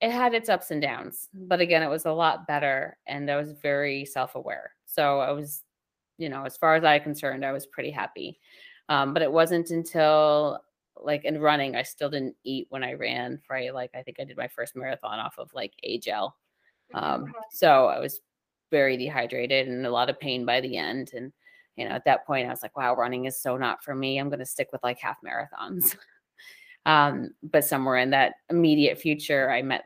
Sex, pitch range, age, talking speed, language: female, 130-160 Hz, 30-49, 215 wpm, English